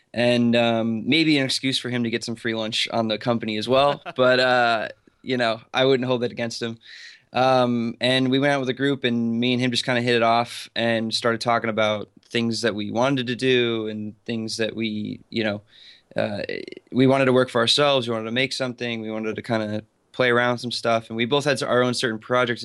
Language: English